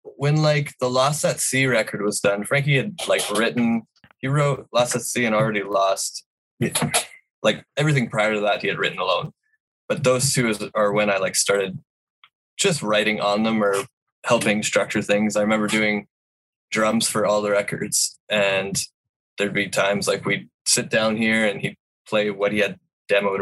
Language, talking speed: English, 180 wpm